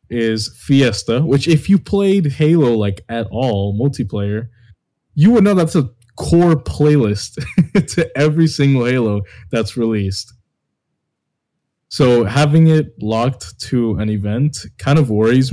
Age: 20-39